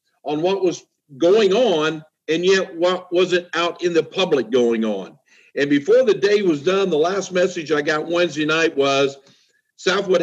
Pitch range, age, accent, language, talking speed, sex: 160-210 Hz, 50-69, American, English, 175 wpm, male